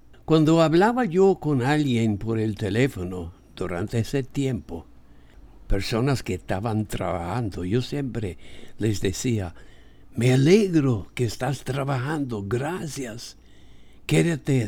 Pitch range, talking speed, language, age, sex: 95-140 Hz, 105 wpm, English, 60-79, male